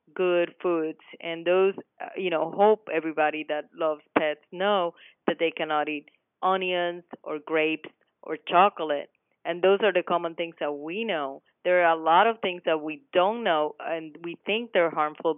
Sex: female